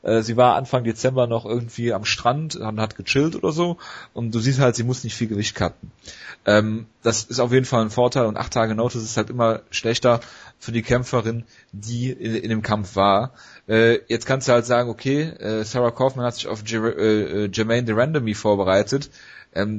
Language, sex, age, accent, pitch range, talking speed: German, male, 30-49, German, 110-125 Hz, 205 wpm